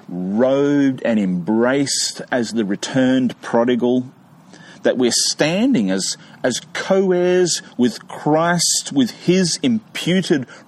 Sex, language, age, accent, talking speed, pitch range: male, English, 40-59, Australian, 100 wpm, 125-185 Hz